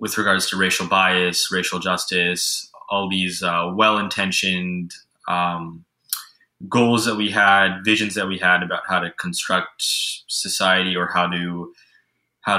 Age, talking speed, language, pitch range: 20-39, 140 wpm, English, 90-105 Hz